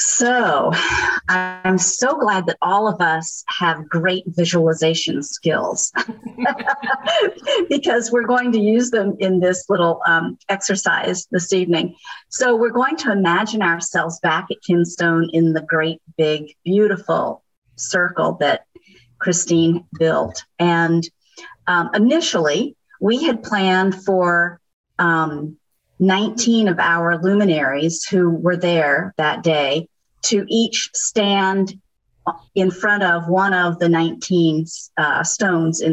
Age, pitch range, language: 50-69, 165-195 Hz, English